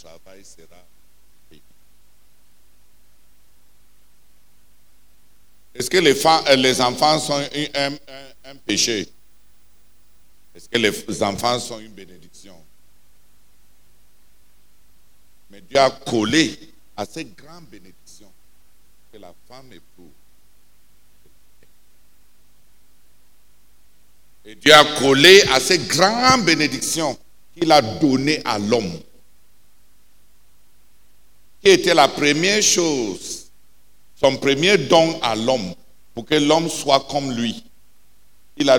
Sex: male